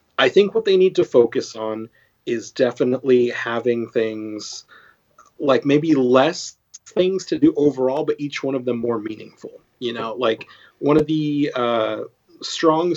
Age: 30-49